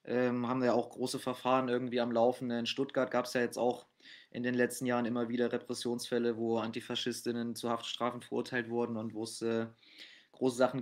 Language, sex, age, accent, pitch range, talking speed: German, male, 20-39, German, 110-125 Hz, 195 wpm